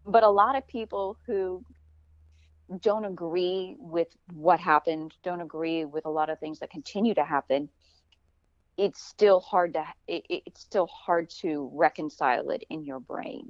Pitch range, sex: 140-175 Hz, female